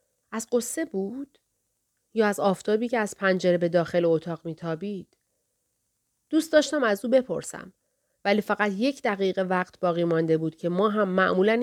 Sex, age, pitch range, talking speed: female, 30-49, 175-220 Hz, 155 wpm